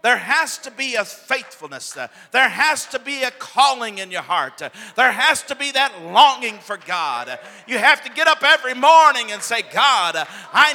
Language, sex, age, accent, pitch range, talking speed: English, male, 50-69, American, 135-205 Hz, 190 wpm